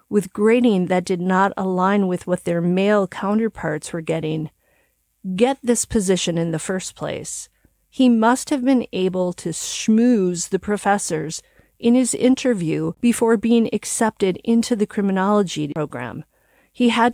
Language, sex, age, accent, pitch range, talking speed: English, female, 40-59, American, 180-225 Hz, 145 wpm